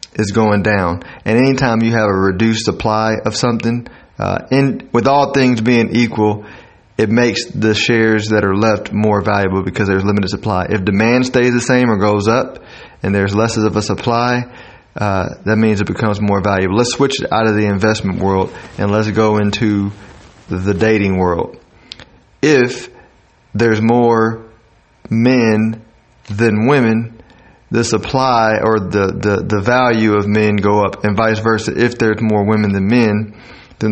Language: English